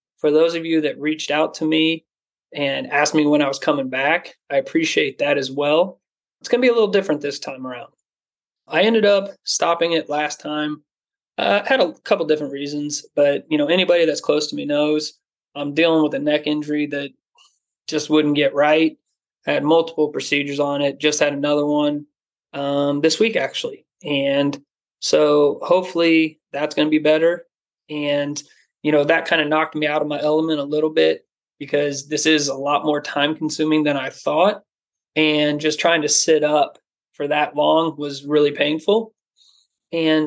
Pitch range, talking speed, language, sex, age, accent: 145-165 Hz, 190 wpm, English, male, 20-39, American